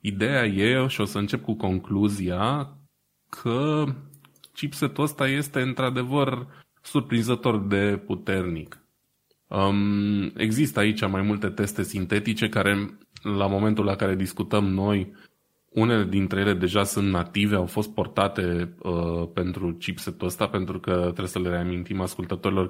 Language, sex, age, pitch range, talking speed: Romanian, male, 20-39, 90-110 Hz, 125 wpm